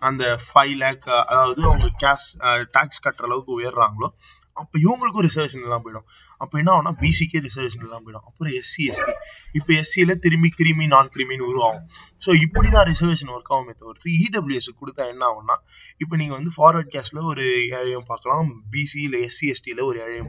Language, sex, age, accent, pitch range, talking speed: Tamil, male, 20-39, native, 110-150 Hz, 160 wpm